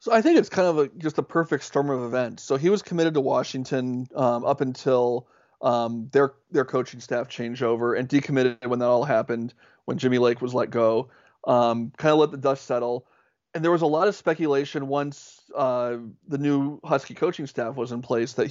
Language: English